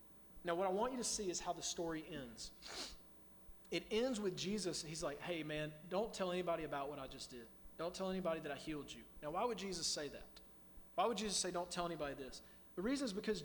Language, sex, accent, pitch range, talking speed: English, male, American, 150-185 Hz, 240 wpm